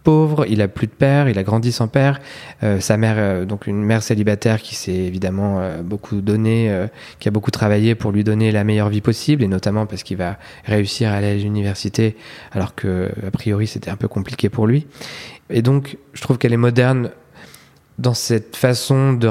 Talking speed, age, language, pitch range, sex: 210 wpm, 20-39, French, 105-120 Hz, male